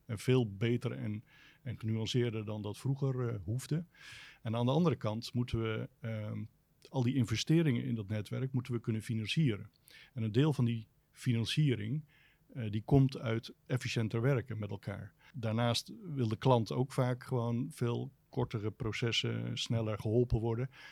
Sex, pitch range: male, 110-130 Hz